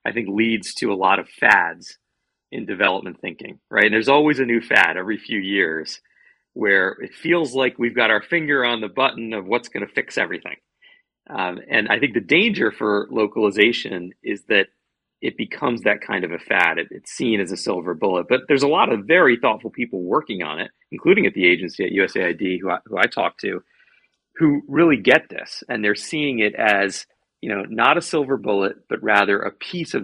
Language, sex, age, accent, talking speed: English, male, 40-59, American, 210 wpm